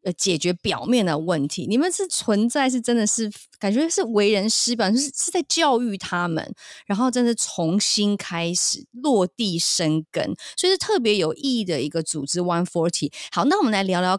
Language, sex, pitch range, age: Chinese, female, 170-245 Hz, 20-39